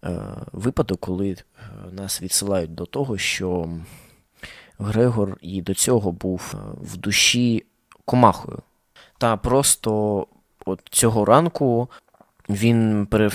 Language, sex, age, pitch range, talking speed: Ukrainian, male, 20-39, 95-115 Hz, 95 wpm